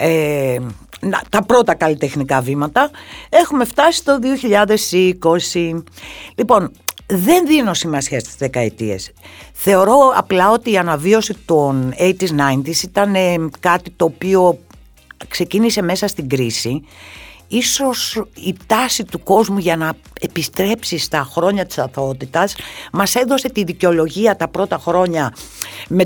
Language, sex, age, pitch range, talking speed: Greek, female, 60-79, 160-230 Hz, 115 wpm